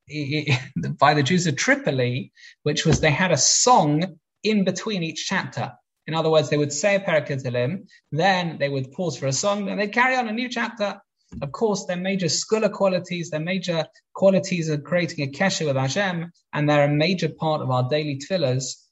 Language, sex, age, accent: English, male, 20-39, British